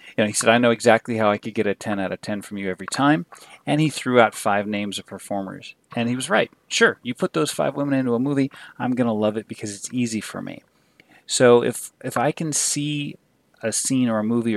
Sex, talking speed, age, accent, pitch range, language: male, 255 wpm, 30-49, American, 110-135 Hz, English